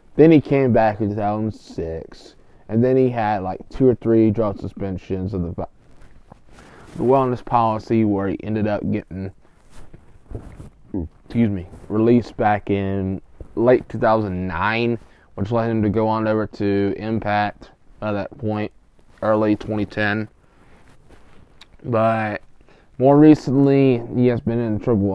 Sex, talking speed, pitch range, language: male, 130 wpm, 100-125 Hz, English